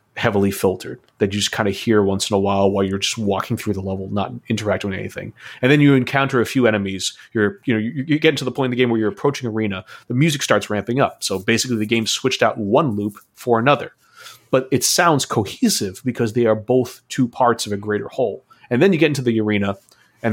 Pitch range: 105-130 Hz